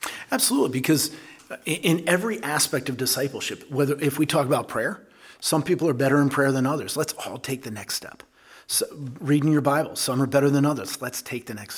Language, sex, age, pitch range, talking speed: English, male, 40-59, 125-150 Hz, 205 wpm